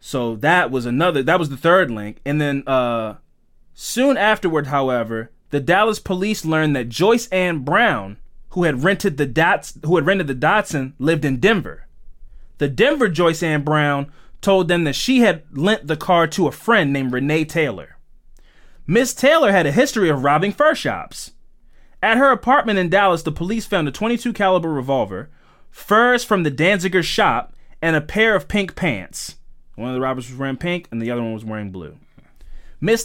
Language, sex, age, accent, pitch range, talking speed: English, male, 20-39, American, 135-195 Hz, 185 wpm